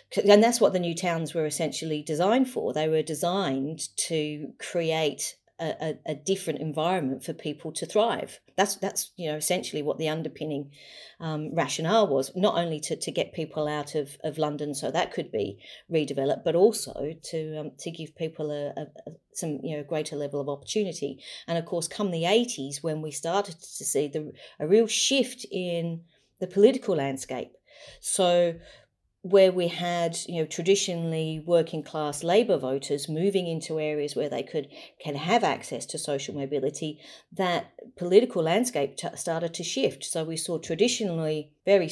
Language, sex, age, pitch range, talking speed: English, female, 40-59, 145-175 Hz, 170 wpm